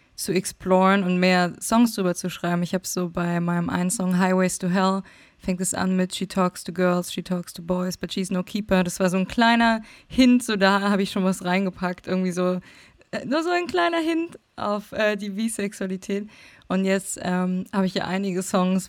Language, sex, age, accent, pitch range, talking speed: German, female, 20-39, German, 185-205 Hz, 210 wpm